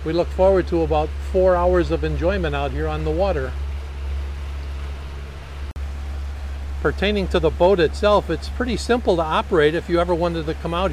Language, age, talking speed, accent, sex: English, 50-69, 170 wpm, American, male